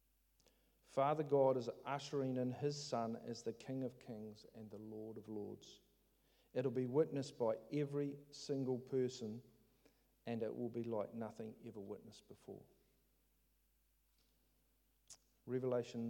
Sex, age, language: male, 50-69, English